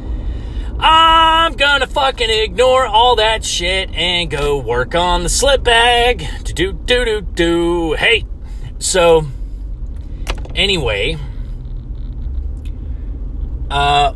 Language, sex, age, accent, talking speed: English, male, 30-49, American, 80 wpm